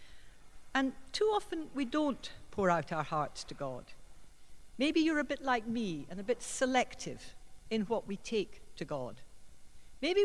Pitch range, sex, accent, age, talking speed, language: 170-250 Hz, female, British, 60-79, 165 wpm, English